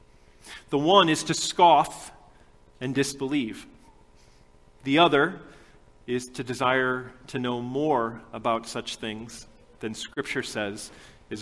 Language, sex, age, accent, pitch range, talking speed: English, male, 40-59, American, 120-175 Hz, 115 wpm